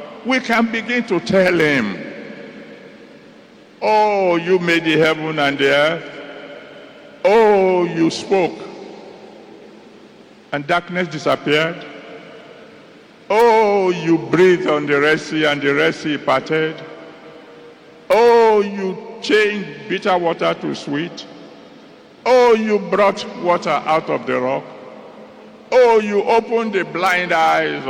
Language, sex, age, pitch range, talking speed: English, male, 60-79, 150-205 Hz, 115 wpm